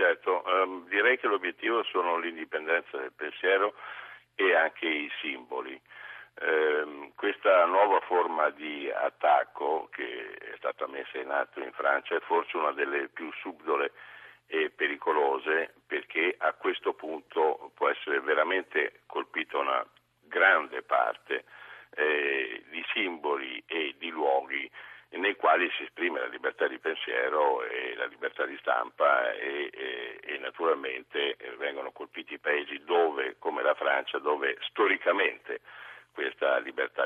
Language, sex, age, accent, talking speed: Italian, male, 60-79, native, 125 wpm